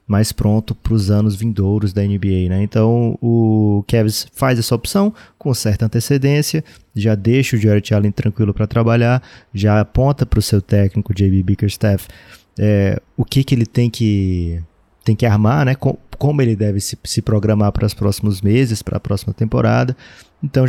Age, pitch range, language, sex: 20-39, 105-125 Hz, Portuguese, male